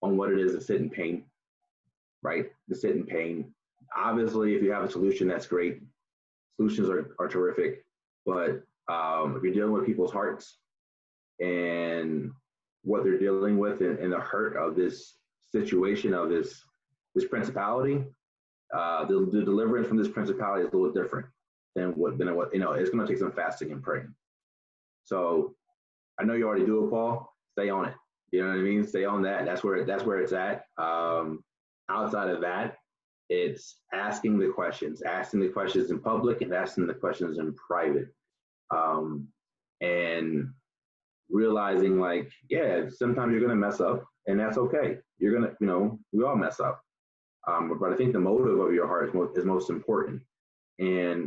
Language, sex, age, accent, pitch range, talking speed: English, male, 30-49, American, 90-140 Hz, 175 wpm